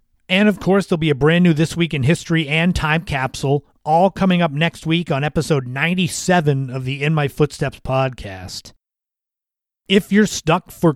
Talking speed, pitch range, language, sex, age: 180 wpm, 145-170 Hz, English, male, 30-49